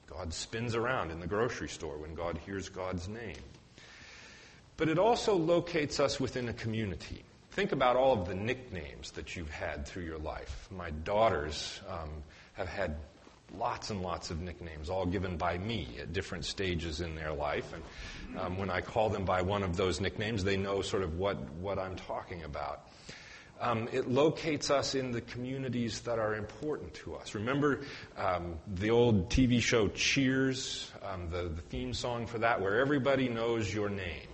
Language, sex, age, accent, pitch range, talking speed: English, male, 40-59, American, 90-125 Hz, 180 wpm